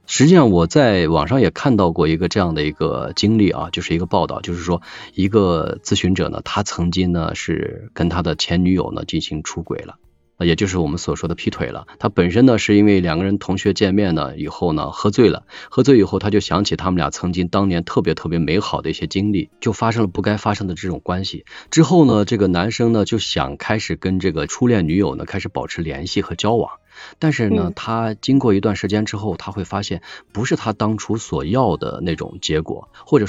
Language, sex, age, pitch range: Chinese, male, 30-49, 90-115 Hz